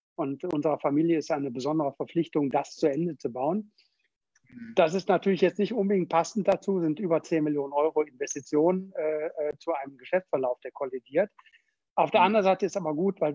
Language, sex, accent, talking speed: German, male, German, 185 wpm